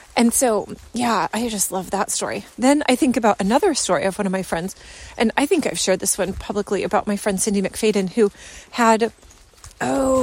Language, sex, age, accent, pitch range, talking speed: English, female, 30-49, American, 200-265 Hz, 205 wpm